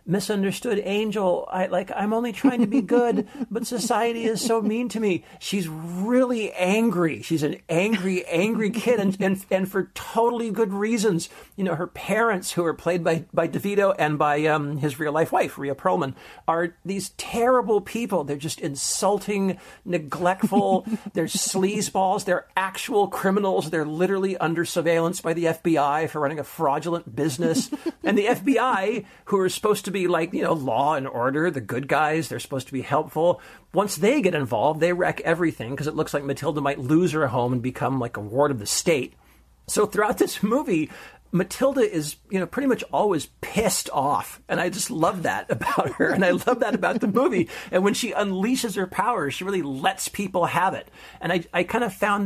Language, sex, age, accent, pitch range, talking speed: English, male, 50-69, American, 160-210 Hz, 190 wpm